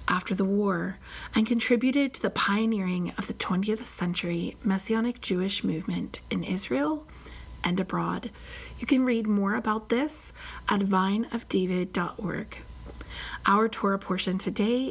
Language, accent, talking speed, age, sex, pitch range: English, American, 125 wpm, 30-49, female, 185-235 Hz